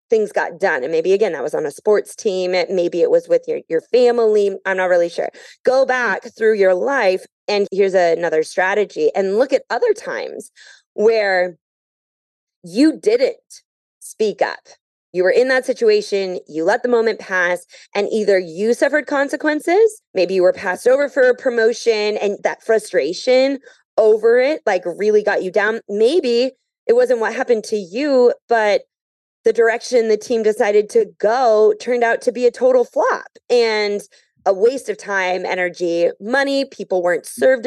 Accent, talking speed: American, 170 wpm